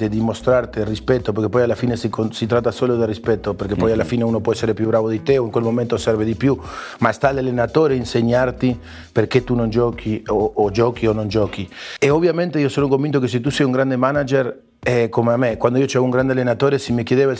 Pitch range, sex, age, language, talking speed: 115-130 Hz, male, 30-49, Italian, 250 wpm